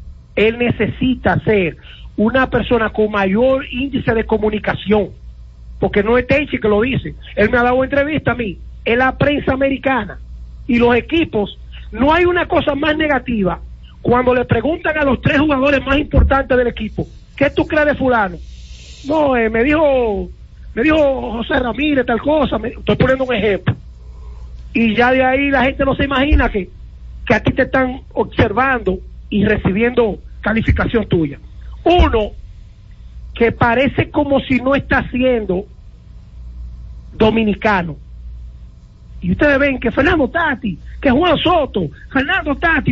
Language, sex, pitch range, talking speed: Spanish, male, 200-275 Hz, 150 wpm